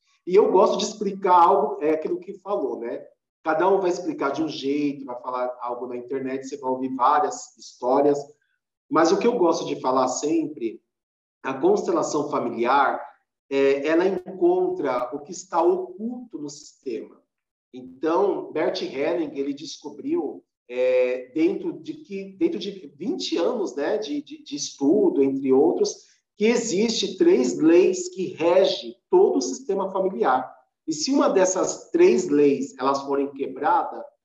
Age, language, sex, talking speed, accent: 40-59, Portuguese, male, 150 wpm, Brazilian